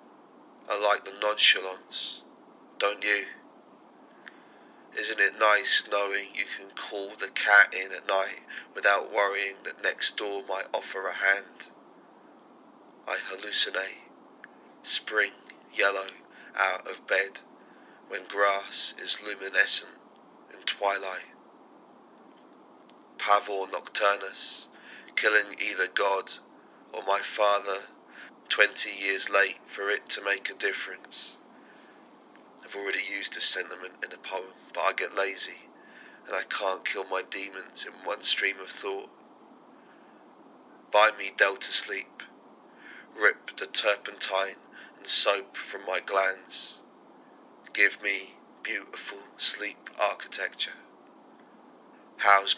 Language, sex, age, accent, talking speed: English, male, 30-49, British, 110 wpm